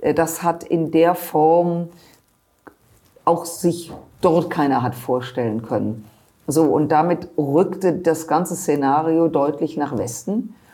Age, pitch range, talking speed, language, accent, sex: 50-69, 150-165 Hz, 125 wpm, German, German, female